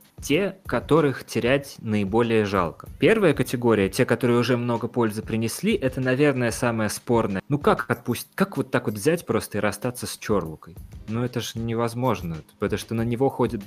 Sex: male